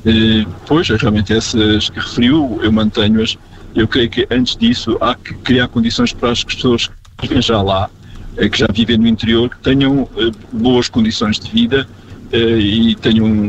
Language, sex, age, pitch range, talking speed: Portuguese, male, 50-69, 110-125 Hz, 180 wpm